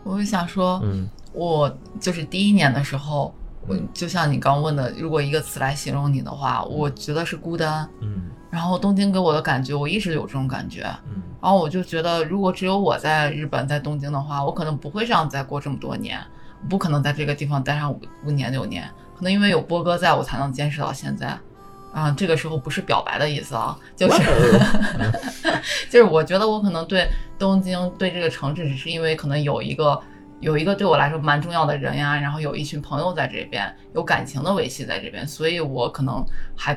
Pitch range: 140-180 Hz